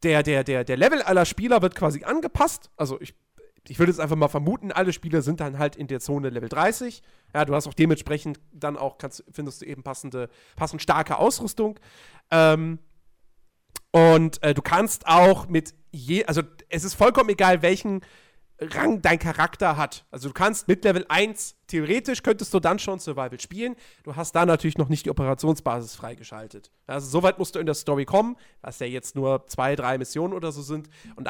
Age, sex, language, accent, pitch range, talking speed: 40-59, male, German, German, 145-195 Hz, 195 wpm